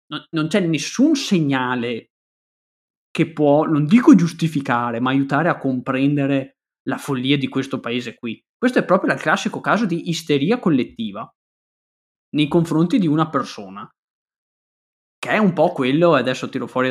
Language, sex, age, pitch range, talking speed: Italian, male, 20-39, 130-165 Hz, 145 wpm